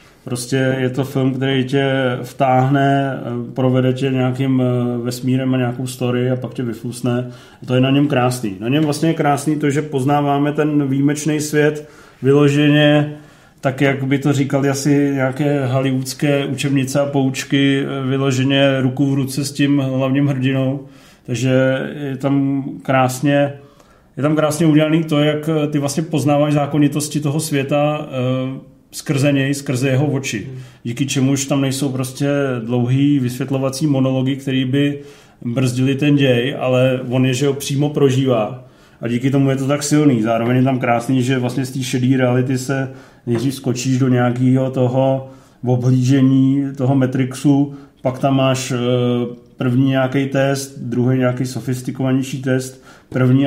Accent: native